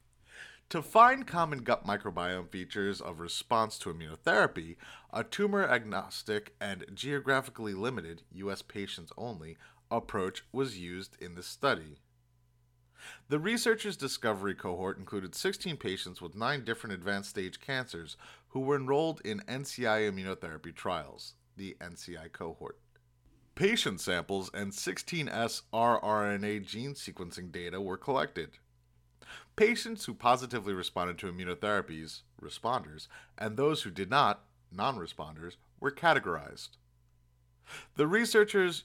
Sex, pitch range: male, 85-125 Hz